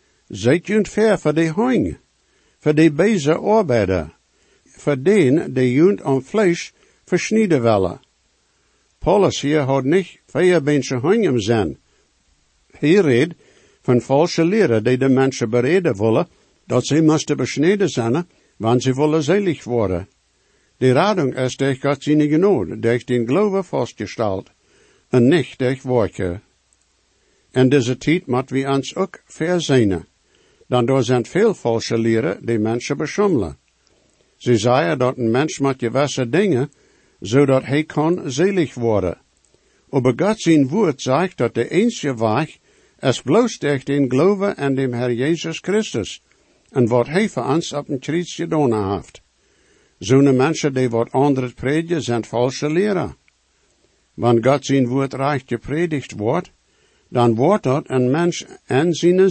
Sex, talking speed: male, 145 wpm